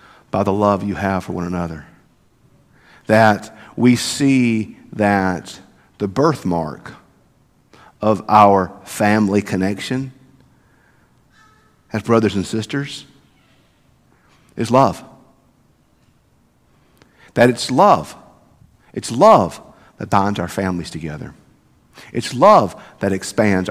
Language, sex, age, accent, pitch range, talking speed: English, male, 50-69, American, 100-140 Hz, 95 wpm